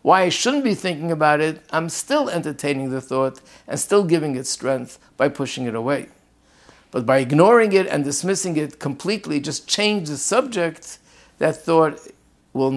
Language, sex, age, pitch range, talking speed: English, male, 60-79, 135-165 Hz, 170 wpm